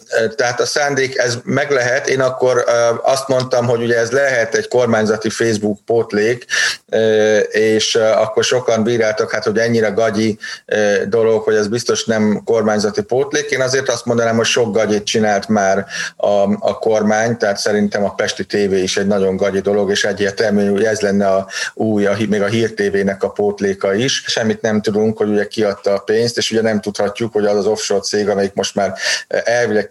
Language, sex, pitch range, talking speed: Hungarian, male, 100-115 Hz, 180 wpm